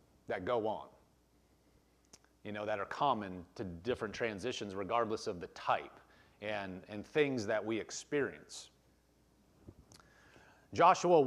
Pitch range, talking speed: 90-130 Hz, 115 wpm